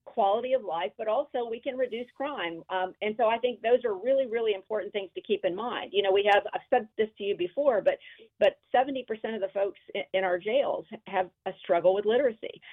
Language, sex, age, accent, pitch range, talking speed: English, female, 40-59, American, 185-250 Hz, 215 wpm